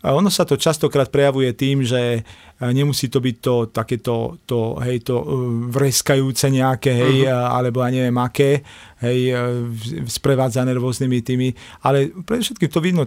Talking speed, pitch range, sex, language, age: 140 wpm, 130-145 Hz, male, Slovak, 40-59